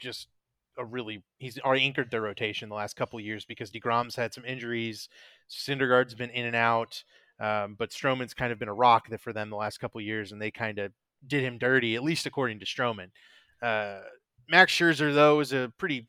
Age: 30-49